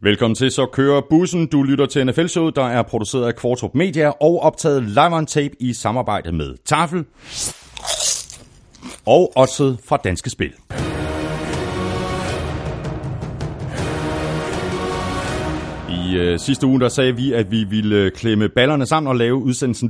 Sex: male